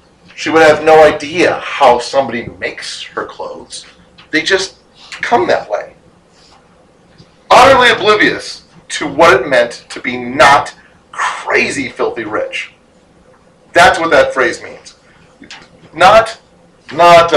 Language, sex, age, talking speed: English, male, 40-59, 115 wpm